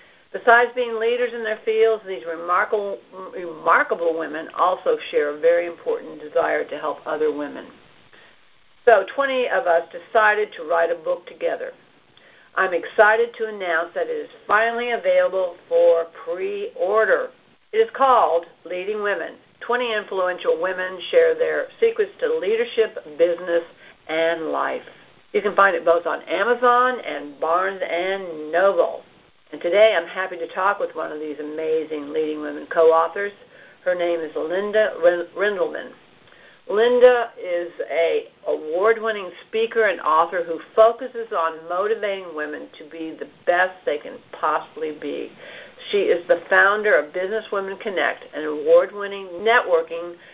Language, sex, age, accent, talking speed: English, female, 60-79, American, 140 wpm